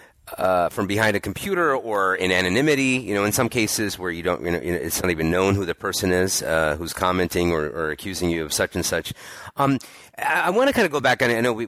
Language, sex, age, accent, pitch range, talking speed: English, male, 30-49, American, 90-115 Hz, 255 wpm